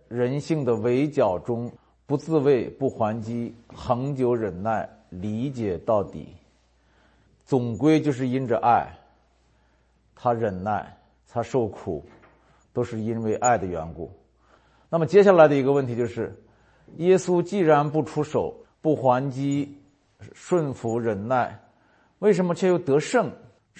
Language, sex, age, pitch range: Chinese, male, 50-69, 100-145 Hz